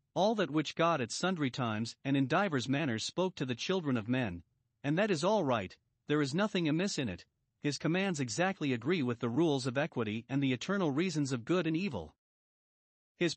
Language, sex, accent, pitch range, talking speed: English, male, American, 125-175 Hz, 205 wpm